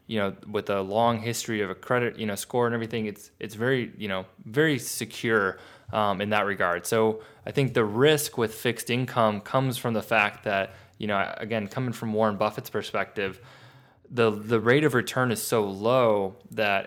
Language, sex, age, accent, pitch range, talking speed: English, male, 20-39, American, 100-120 Hz, 195 wpm